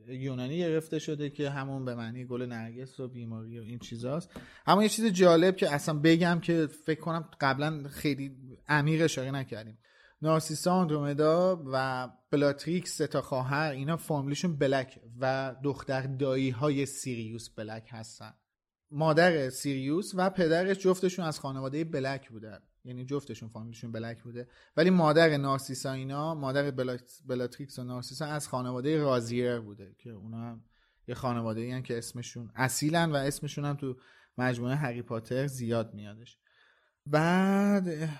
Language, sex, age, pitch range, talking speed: Persian, male, 30-49, 125-165 Hz, 140 wpm